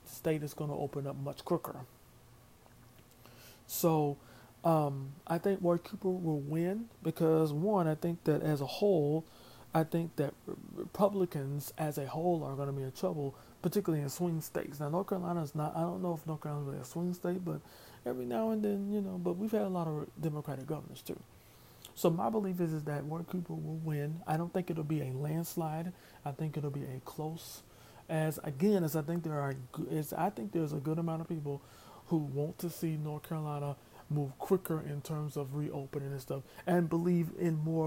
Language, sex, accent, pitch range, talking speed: English, male, American, 140-165 Hz, 205 wpm